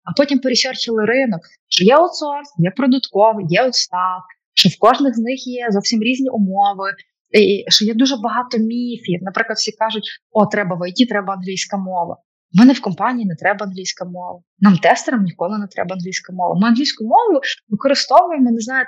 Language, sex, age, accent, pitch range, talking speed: Ukrainian, female, 20-39, native, 200-255 Hz, 180 wpm